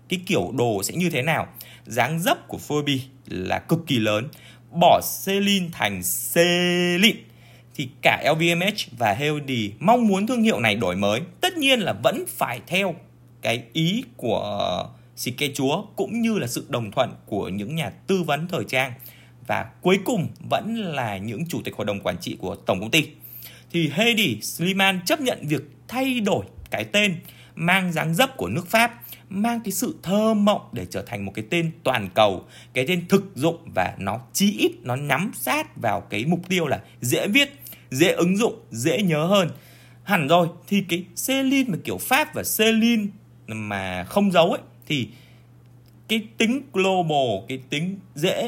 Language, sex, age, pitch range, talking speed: Vietnamese, male, 20-39, 120-190 Hz, 180 wpm